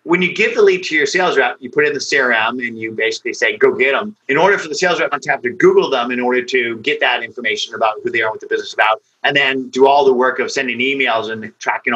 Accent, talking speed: American, 290 wpm